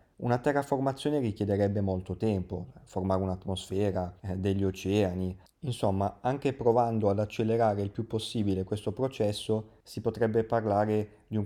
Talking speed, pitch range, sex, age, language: 125 wpm, 100-115 Hz, male, 20-39, Italian